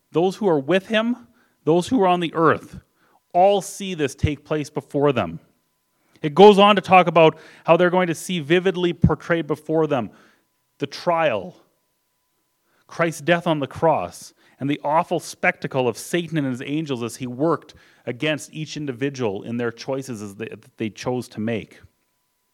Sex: male